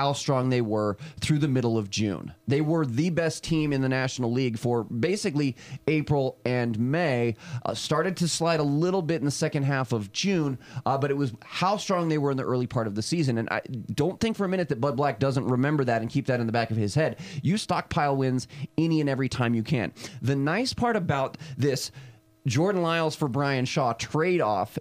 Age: 30-49